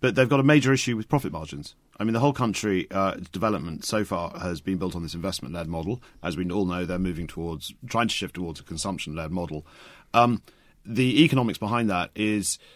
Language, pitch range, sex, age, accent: Chinese, 85-105 Hz, male, 40-59, British